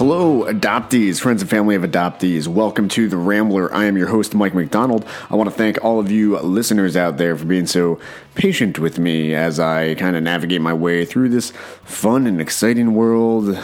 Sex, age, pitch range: male, 30-49, 95-125 Hz